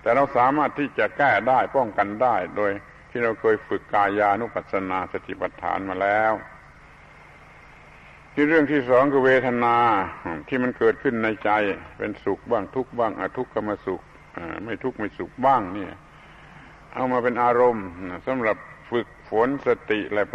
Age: 70-89